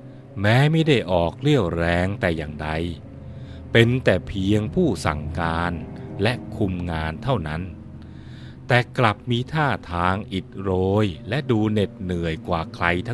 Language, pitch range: Thai, 85-115 Hz